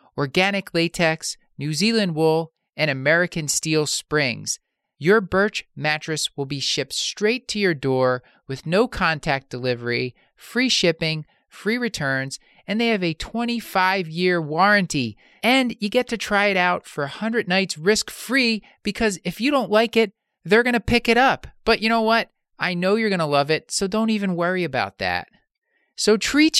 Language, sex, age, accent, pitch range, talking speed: English, male, 30-49, American, 150-220 Hz, 170 wpm